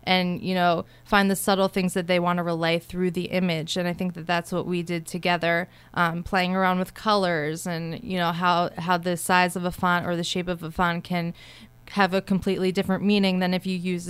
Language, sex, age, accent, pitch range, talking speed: English, female, 20-39, American, 175-195 Hz, 235 wpm